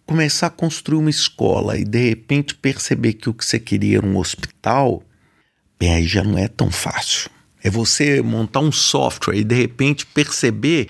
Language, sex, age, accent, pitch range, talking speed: Portuguese, male, 50-69, Brazilian, 115-170 Hz, 180 wpm